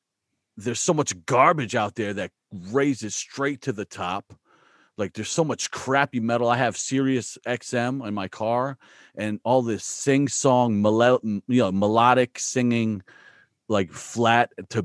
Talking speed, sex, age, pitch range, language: 140 wpm, male, 40-59, 95-120 Hz, English